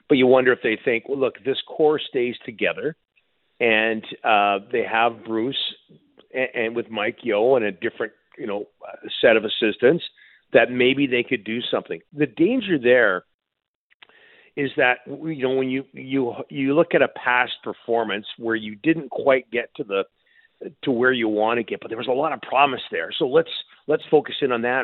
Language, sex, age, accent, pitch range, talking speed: English, male, 50-69, American, 115-145 Hz, 195 wpm